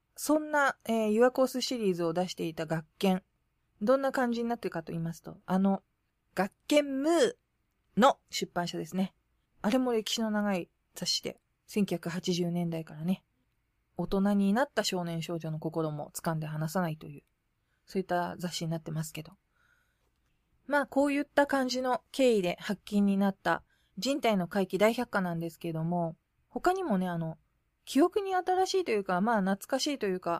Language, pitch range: Japanese, 170-250 Hz